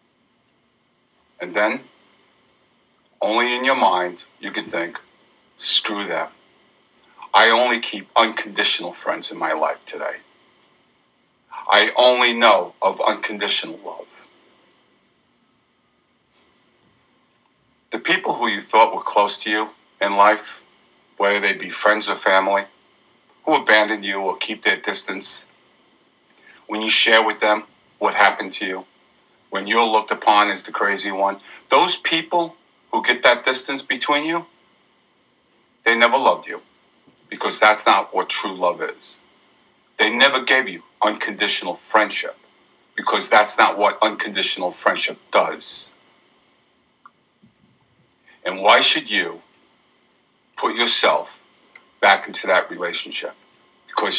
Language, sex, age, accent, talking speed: English, male, 50-69, American, 120 wpm